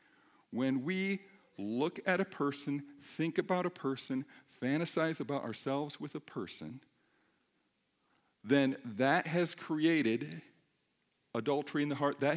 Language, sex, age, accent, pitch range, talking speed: English, male, 50-69, American, 145-200 Hz, 120 wpm